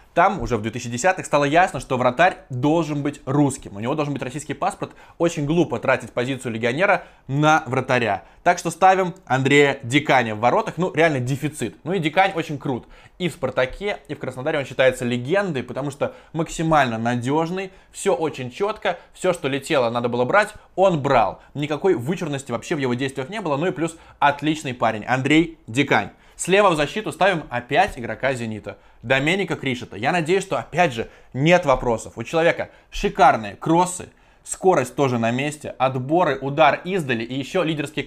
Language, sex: Russian, male